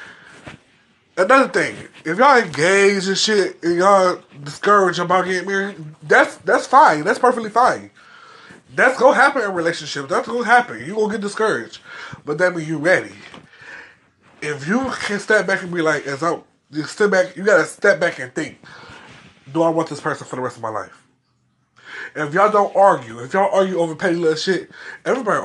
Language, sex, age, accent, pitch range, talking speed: English, male, 20-39, American, 155-200 Hz, 185 wpm